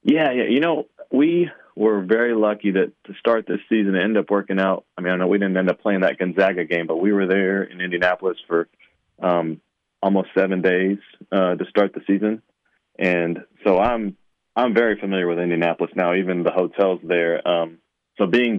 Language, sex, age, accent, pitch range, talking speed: English, male, 30-49, American, 90-100 Hz, 200 wpm